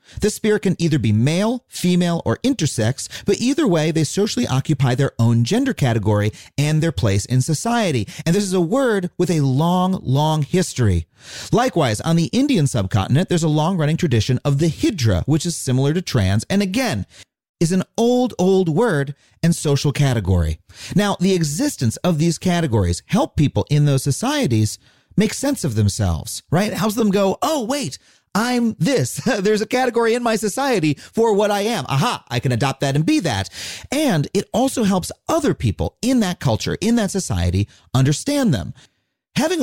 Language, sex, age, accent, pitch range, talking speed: English, male, 40-59, American, 130-205 Hz, 180 wpm